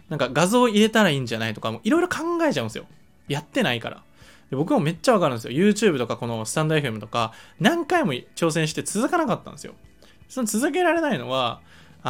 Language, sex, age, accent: Japanese, male, 20-39, native